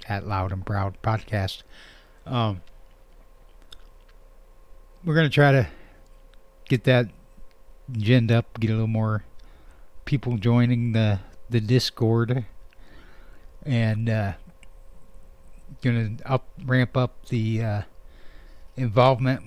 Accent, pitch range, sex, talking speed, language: American, 90-130 Hz, male, 100 wpm, English